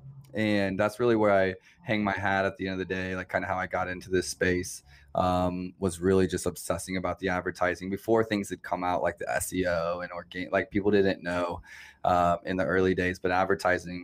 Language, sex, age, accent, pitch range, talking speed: English, male, 20-39, American, 90-100 Hz, 220 wpm